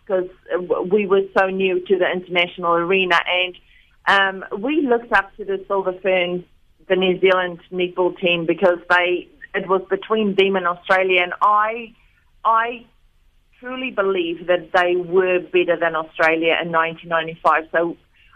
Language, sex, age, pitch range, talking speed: English, female, 40-59, 175-195 Hz, 135 wpm